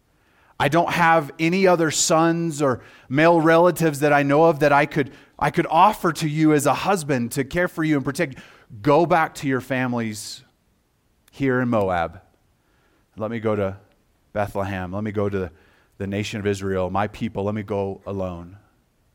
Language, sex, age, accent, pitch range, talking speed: English, male, 30-49, American, 95-130 Hz, 185 wpm